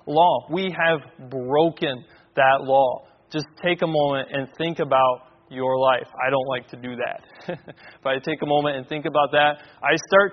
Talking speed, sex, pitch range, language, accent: 185 wpm, male, 140-180 Hz, English, American